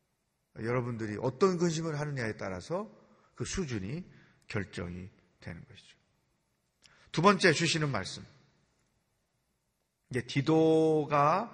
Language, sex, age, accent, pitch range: Korean, male, 40-59, native, 125-170 Hz